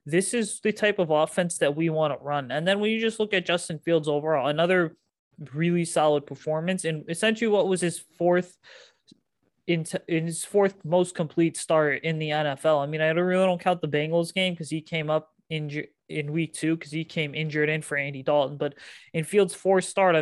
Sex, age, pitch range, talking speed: male, 20-39, 150-175 Hz, 215 wpm